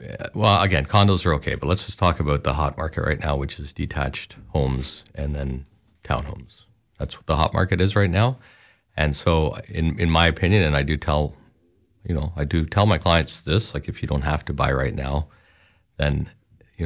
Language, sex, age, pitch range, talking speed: English, male, 50-69, 75-95 Hz, 210 wpm